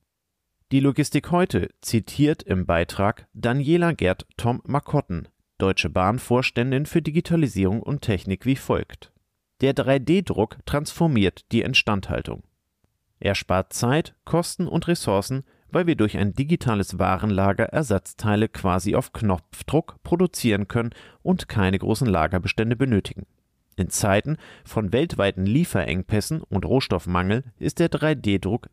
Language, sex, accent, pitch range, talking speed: German, male, German, 95-135 Hz, 115 wpm